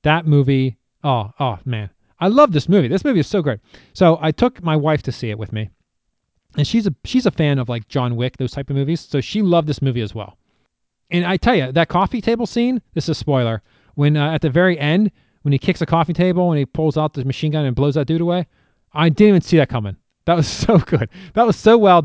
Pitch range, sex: 130-170 Hz, male